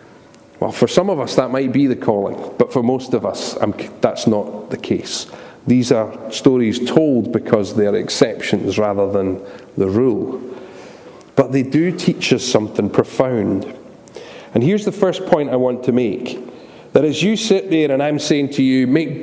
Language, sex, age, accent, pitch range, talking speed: English, male, 40-59, British, 125-165 Hz, 180 wpm